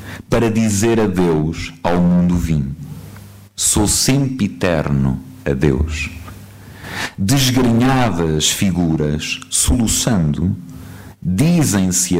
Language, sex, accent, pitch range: Spanish, male, Portuguese, 85-110 Hz